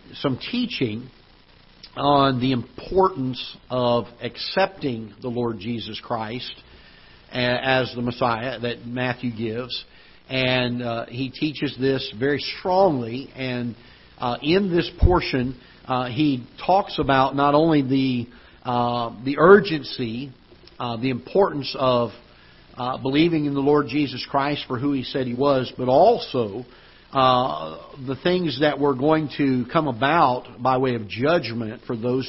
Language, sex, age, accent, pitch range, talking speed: English, male, 50-69, American, 120-140 Hz, 135 wpm